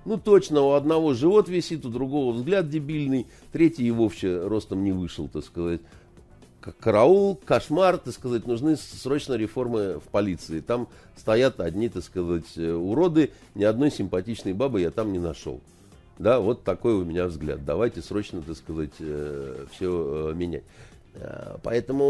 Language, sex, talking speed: Russian, male, 145 wpm